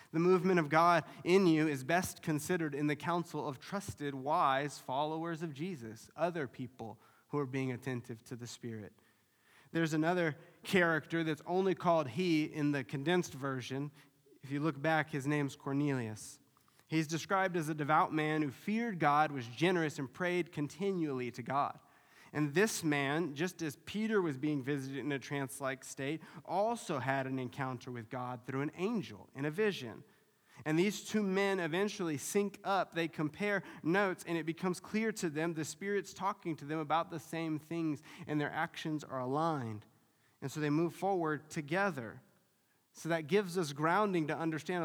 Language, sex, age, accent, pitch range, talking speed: English, male, 20-39, American, 140-175 Hz, 175 wpm